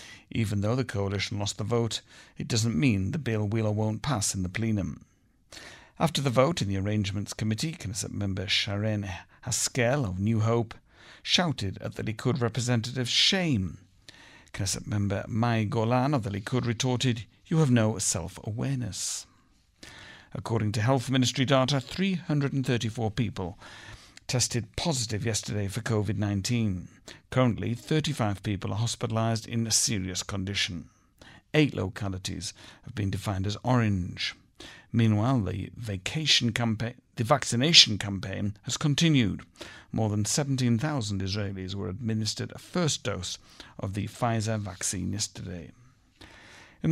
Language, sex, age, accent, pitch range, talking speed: English, male, 50-69, British, 100-125 Hz, 130 wpm